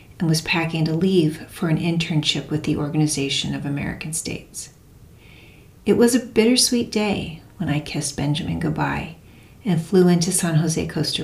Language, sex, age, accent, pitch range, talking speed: English, female, 40-59, American, 135-175 Hz, 160 wpm